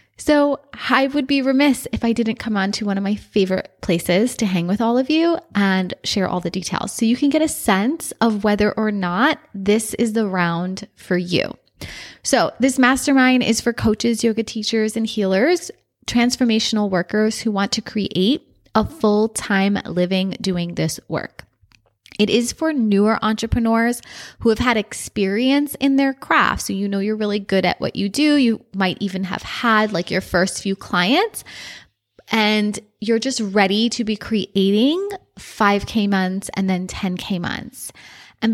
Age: 20-39